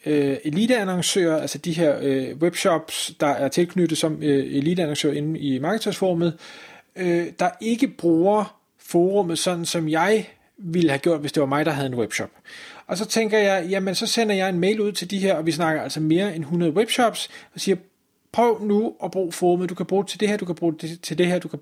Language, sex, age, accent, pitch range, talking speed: Danish, male, 30-49, native, 160-205 Hz, 220 wpm